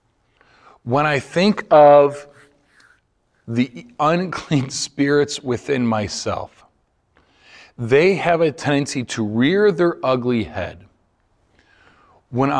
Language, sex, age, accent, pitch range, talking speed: English, male, 40-59, American, 105-125 Hz, 90 wpm